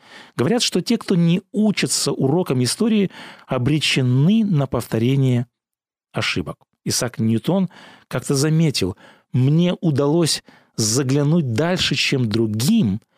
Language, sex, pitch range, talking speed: Russian, male, 125-185 Hz, 100 wpm